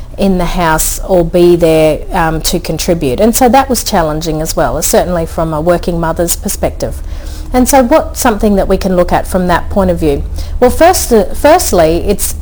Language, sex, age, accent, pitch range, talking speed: English, female, 40-59, Australian, 165-225 Hz, 200 wpm